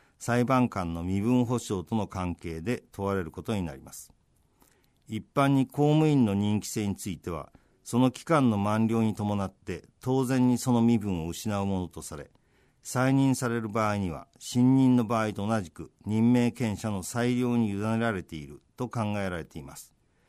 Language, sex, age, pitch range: Japanese, male, 50-69, 95-125 Hz